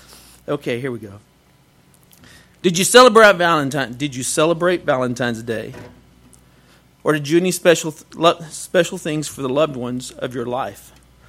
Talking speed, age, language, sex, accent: 155 wpm, 50-69, English, male, American